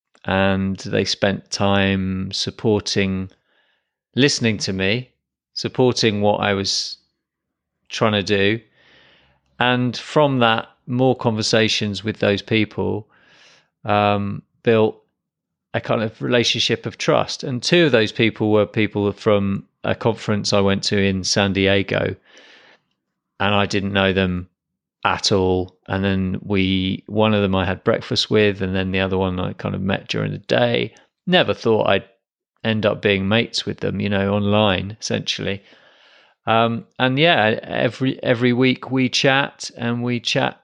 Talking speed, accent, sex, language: 150 wpm, British, male, English